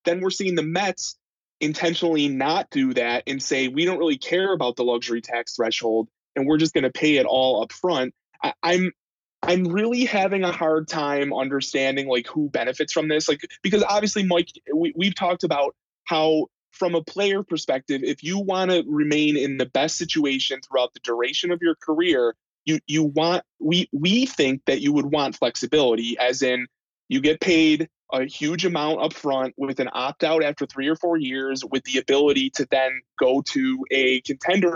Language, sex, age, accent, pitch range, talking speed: English, male, 20-39, American, 135-175 Hz, 190 wpm